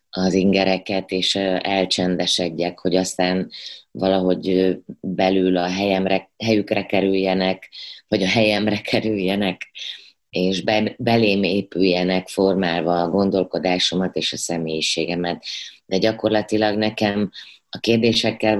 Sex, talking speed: female, 95 wpm